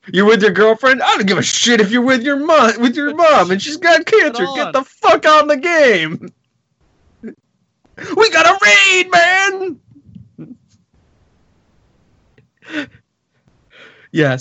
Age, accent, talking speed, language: 20-39, American, 135 wpm, English